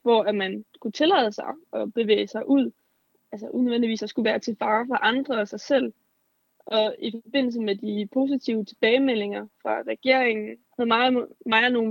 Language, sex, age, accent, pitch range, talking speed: Danish, female, 20-39, native, 230-275 Hz, 180 wpm